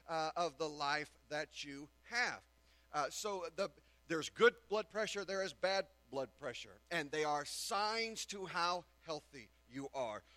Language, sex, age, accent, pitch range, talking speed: English, male, 40-59, American, 145-200 Hz, 160 wpm